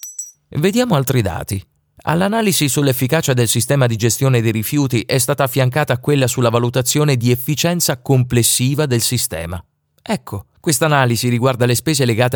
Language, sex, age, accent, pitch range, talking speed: Italian, male, 30-49, native, 115-145 Hz, 140 wpm